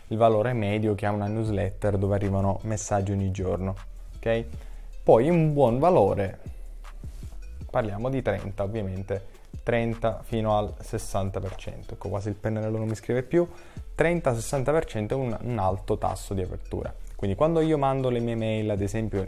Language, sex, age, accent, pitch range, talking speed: Italian, male, 20-39, native, 100-120 Hz, 165 wpm